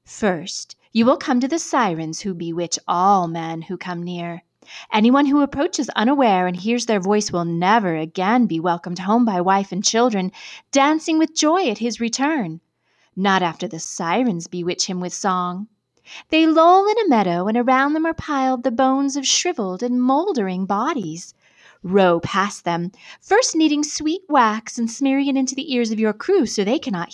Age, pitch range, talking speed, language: 30-49, 185-275 Hz, 180 wpm, English